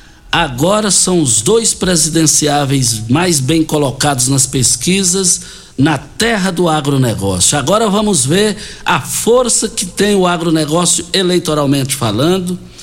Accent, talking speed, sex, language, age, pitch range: Brazilian, 115 wpm, male, Portuguese, 60-79, 140-185 Hz